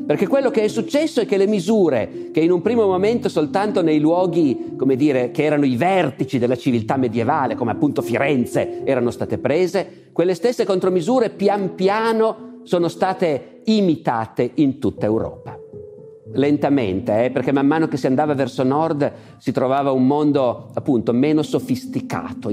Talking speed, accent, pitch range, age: 160 wpm, native, 120-170 Hz, 40-59